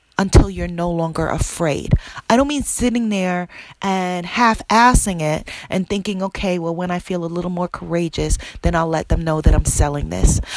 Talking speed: 185 wpm